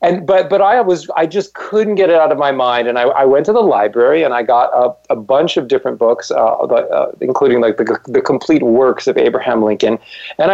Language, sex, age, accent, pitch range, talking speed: English, male, 40-59, American, 125-180 Hz, 245 wpm